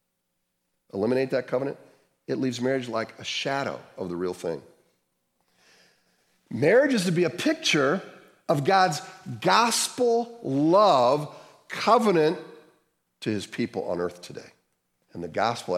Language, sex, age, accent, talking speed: English, male, 50-69, American, 125 wpm